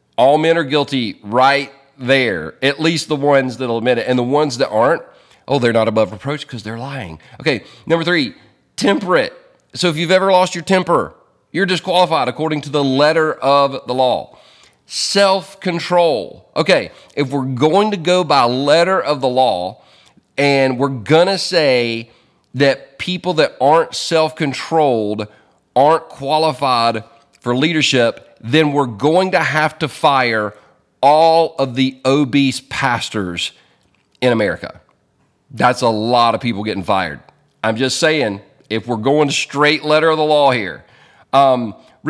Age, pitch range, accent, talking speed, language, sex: 40-59, 130-170 Hz, American, 150 wpm, English, male